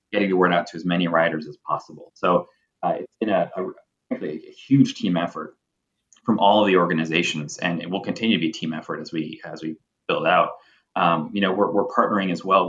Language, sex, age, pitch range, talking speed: English, male, 30-49, 85-95 Hz, 225 wpm